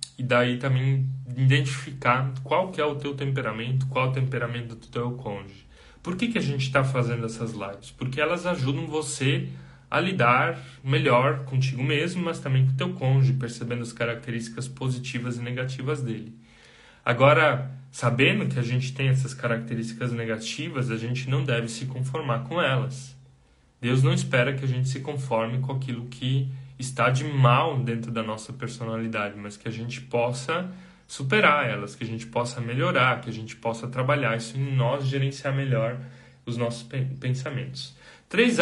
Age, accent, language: 10-29, Brazilian, Portuguese